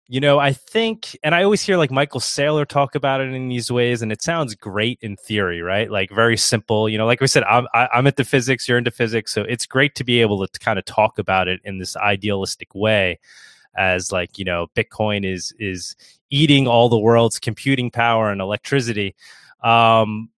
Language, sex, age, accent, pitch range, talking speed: English, male, 20-39, American, 100-125 Hz, 210 wpm